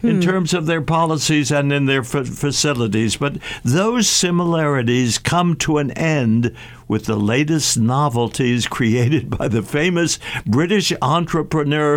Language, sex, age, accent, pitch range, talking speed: English, male, 60-79, American, 130-165 Hz, 130 wpm